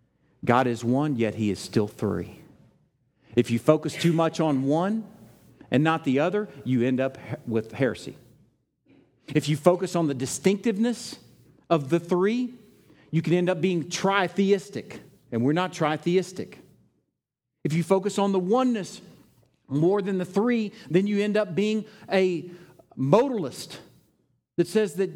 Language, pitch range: English, 130-205 Hz